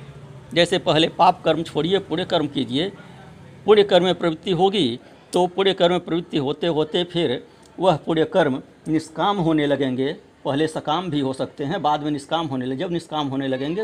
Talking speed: 180 wpm